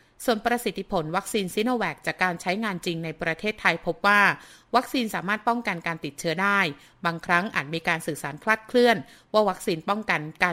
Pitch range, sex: 165-210 Hz, female